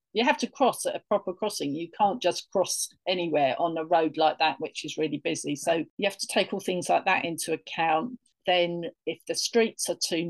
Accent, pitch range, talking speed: British, 165-205 Hz, 225 wpm